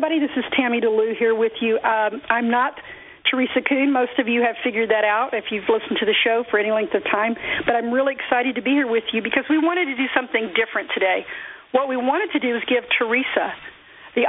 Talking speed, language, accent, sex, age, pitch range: 235 wpm, English, American, female, 50-69, 225-275 Hz